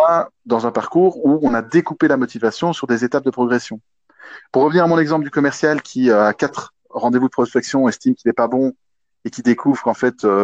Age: 20-39